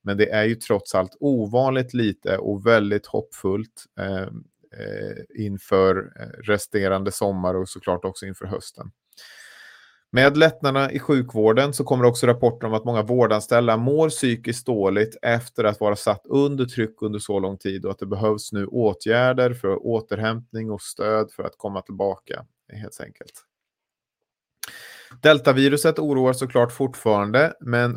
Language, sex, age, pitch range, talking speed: Swedish, male, 30-49, 100-125 Hz, 145 wpm